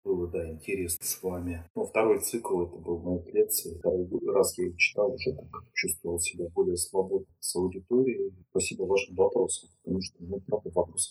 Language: Russian